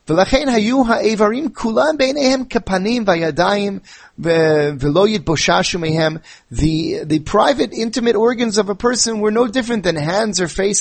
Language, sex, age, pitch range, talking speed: English, male, 30-49, 145-220 Hz, 85 wpm